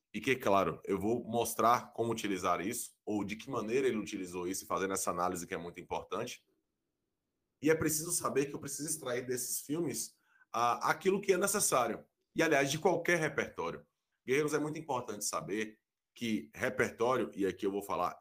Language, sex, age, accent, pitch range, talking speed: Portuguese, male, 20-39, Brazilian, 110-160 Hz, 180 wpm